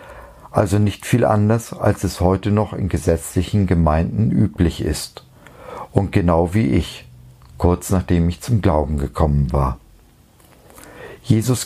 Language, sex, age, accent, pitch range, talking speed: German, male, 50-69, German, 85-105 Hz, 130 wpm